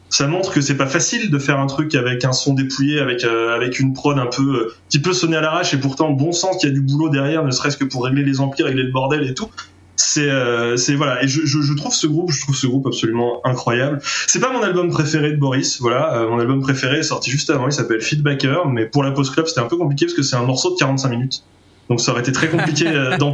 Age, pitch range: 20-39, 130-160 Hz